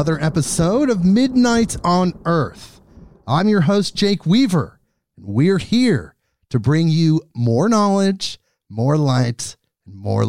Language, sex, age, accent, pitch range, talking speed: English, male, 40-59, American, 140-195 Hz, 130 wpm